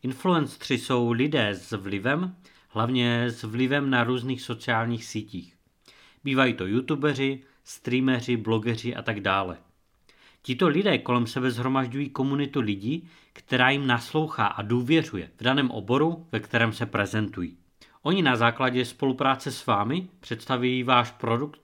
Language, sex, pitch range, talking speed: Czech, male, 115-145 Hz, 135 wpm